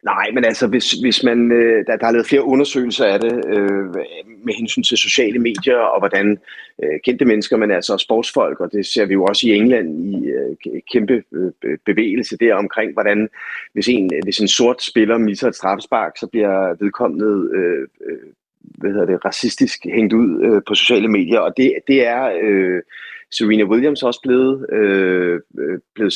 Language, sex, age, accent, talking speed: Danish, male, 30-49, native, 180 wpm